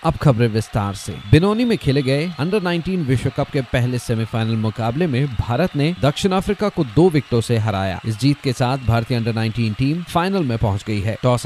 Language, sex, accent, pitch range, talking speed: Hindi, male, native, 120-160 Hz, 210 wpm